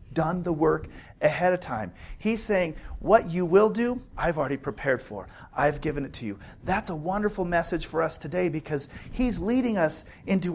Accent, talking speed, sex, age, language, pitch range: American, 190 wpm, male, 40-59, English, 135-190 Hz